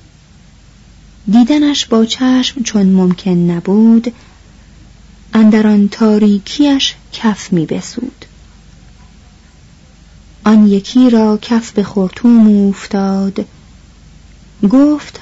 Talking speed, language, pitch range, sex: 70 wpm, Persian, 185-245 Hz, female